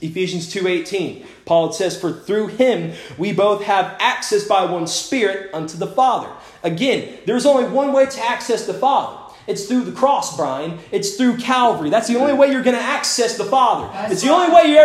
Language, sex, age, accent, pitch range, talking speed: English, male, 30-49, American, 160-260 Hz, 200 wpm